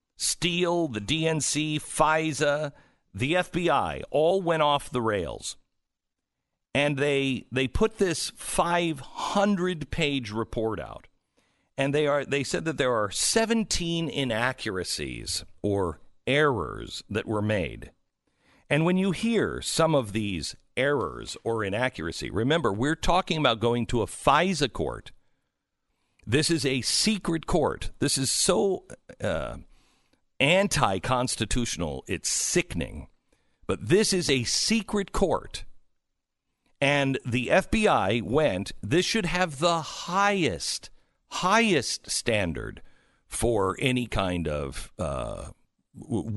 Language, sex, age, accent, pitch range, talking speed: English, male, 50-69, American, 115-170 Hz, 115 wpm